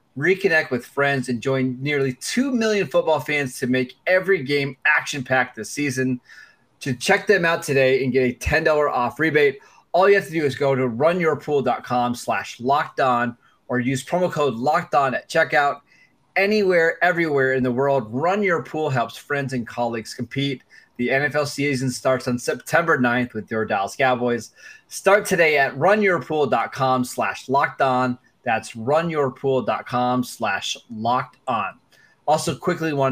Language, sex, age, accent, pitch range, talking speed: English, male, 20-39, American, 125-155 Hz, 160 wpm